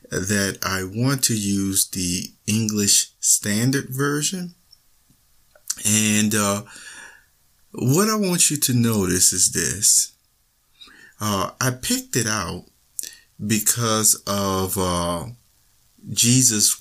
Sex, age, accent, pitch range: male, 50-69, American, 95-120 Hz